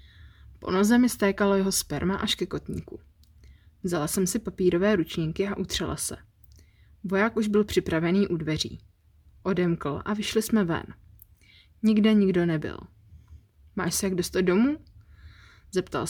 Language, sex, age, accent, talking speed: Czech, female, 20-39, native, 140 wpm